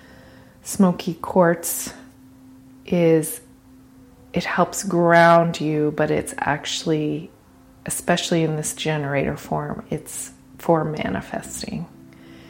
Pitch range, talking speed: 130-180 Hz, 85 wpm